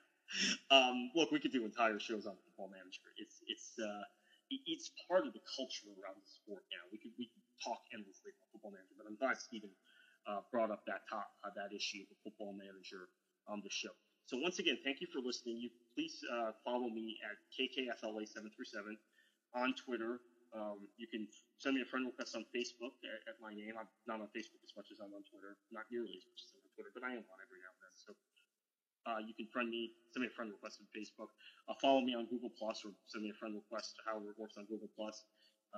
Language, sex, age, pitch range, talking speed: English, male, 30-49, 110-140 Hz, 230 wpm